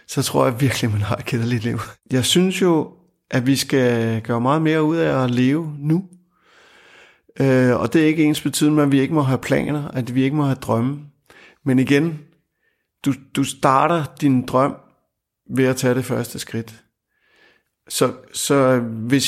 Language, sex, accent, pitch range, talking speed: Danish, male, native, 120-145 Hz, 180 wpm